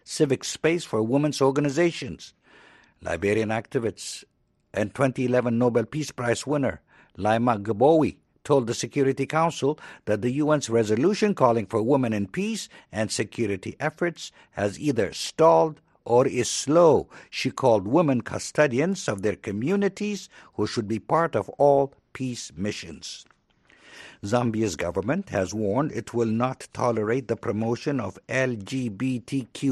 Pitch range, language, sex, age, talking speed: 110-150 Hz, English, male, 60-79, 130 wpm